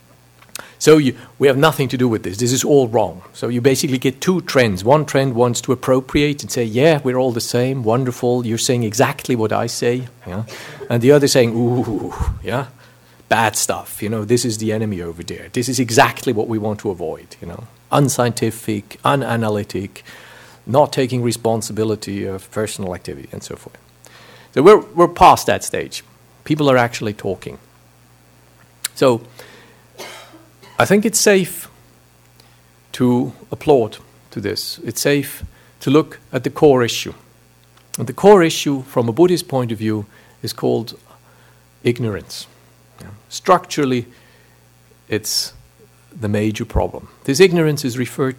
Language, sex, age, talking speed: English, male, 50-69, 155 wpm